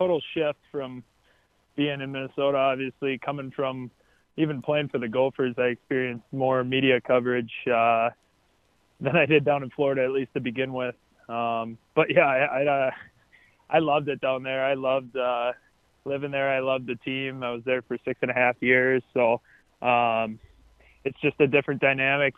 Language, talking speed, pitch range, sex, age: English, 180 wpm, 125-140 Hz, male, 20-39